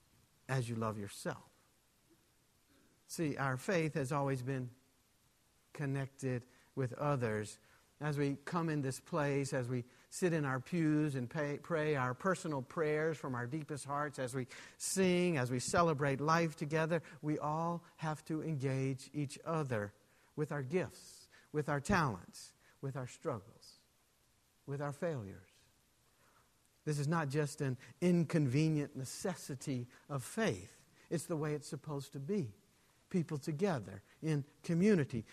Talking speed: 140 wpm